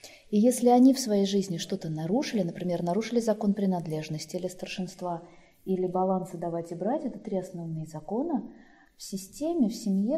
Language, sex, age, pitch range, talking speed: Russian, female, 20-39, 180-235 Hz, 160 wpm